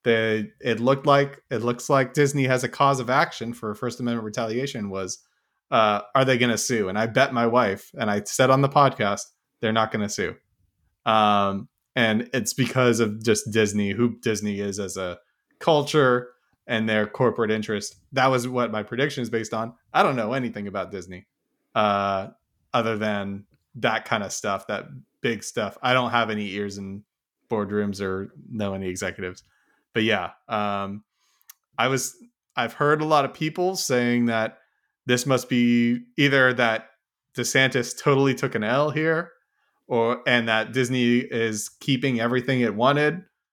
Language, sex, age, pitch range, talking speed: English, male, 20-39, 105-130 Hz, 170 wpm